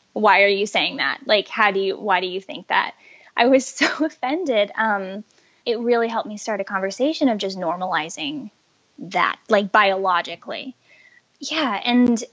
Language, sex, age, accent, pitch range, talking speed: English, female, 10-29, American, 195-255 Hz, 165 wpm